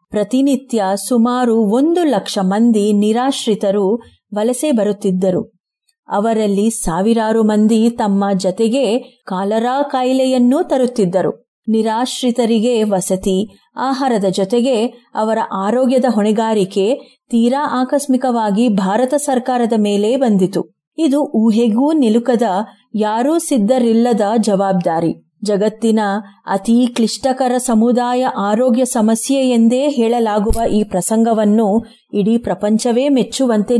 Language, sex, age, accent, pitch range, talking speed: Kannada, female, 30-49, native, 205-250 Hz, 85 wpm